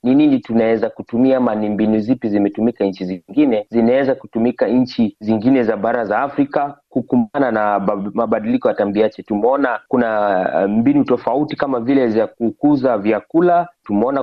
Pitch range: 110-145 Hz